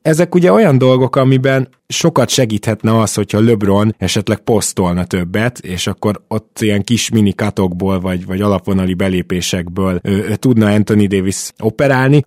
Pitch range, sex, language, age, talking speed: 95-115 Hz, male, Hungarian, 20-39, 140 wpm